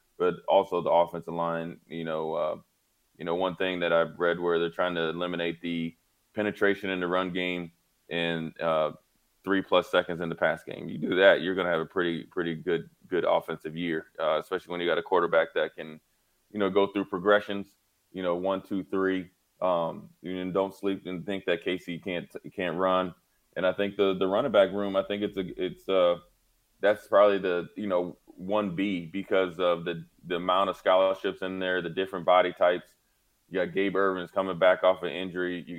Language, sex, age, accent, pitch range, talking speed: English, male, 20-39, American, 85-95 Hz, 210 wpm